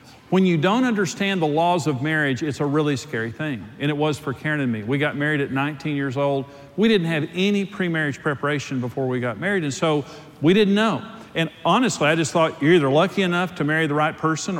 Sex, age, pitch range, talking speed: male, 50-69, 135-170 Hz, 230 wpm